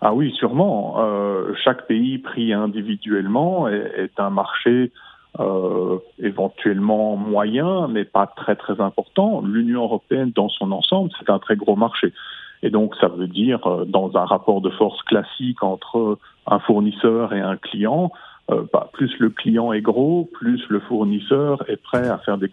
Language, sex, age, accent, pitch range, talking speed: French, male, 40-59, French, 100-125 Hz, 165 wpm